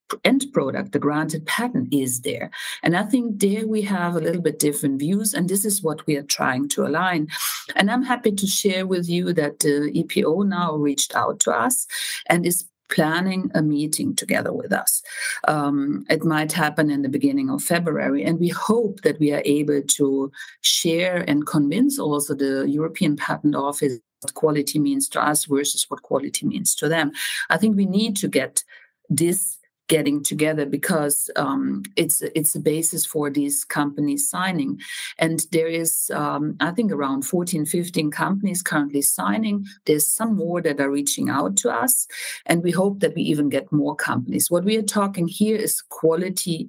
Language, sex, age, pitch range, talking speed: English, female, 50-69, 145-200 Hz, 185 wpm